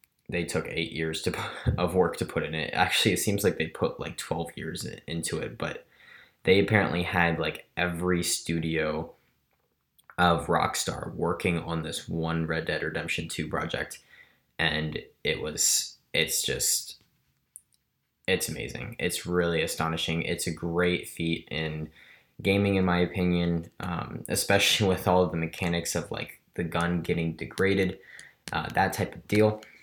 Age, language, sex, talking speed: 20-39, English, male, 160 wpm